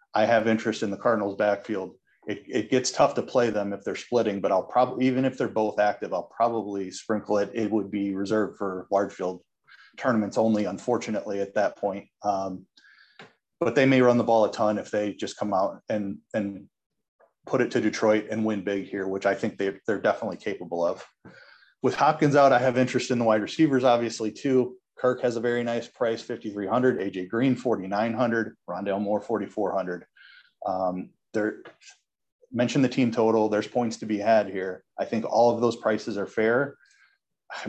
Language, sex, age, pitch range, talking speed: English, male, 30-49, 100-120 Hz, 200 wpm